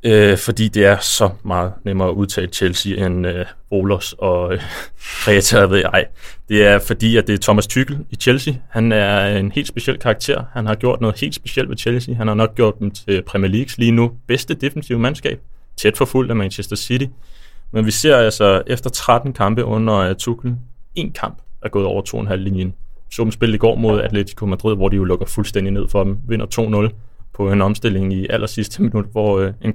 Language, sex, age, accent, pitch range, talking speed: Danish, male, 20-39, native, 95-115 Hz, 205 wpm